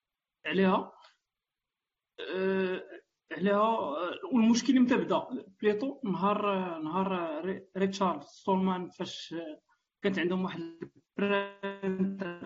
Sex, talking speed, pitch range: male, 90 wpm, 180-210 Hz